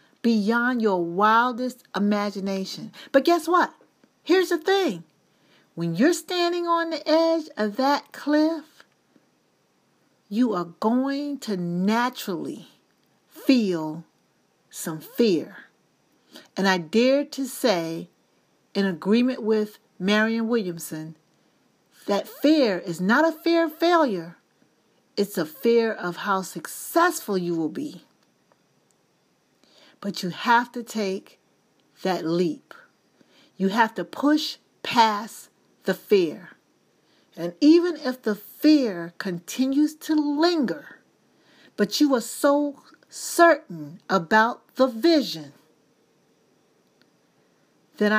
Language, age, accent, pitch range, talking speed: English, 40-59, American, 190-295 Hz, 105 wpm